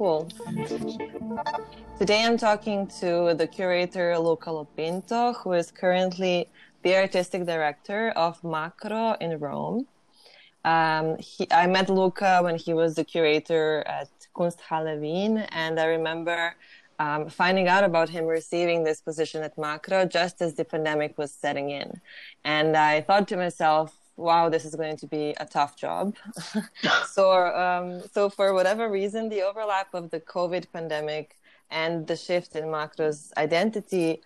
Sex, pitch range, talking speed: female, 155-185 Hz, 145 wpm